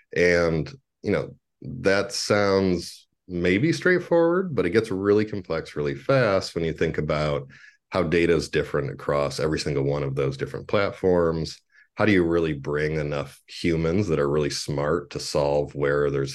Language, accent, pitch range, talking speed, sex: English, American, 70-90 Hz, 165 wpm, male